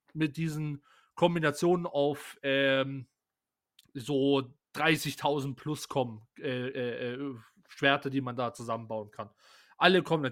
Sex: male